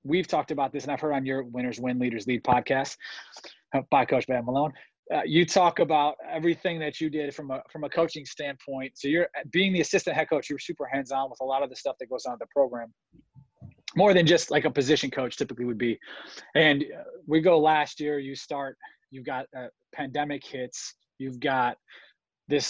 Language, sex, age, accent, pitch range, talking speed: English, male, 30-49, American, 135-155 Hz, 210 wpm